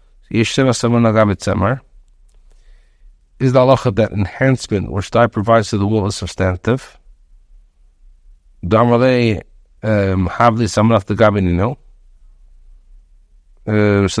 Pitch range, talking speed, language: 100-120 Hz, 70 wpm, English